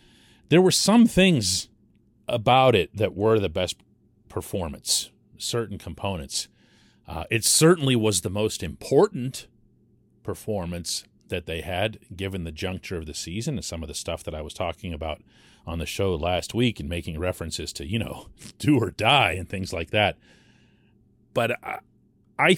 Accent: American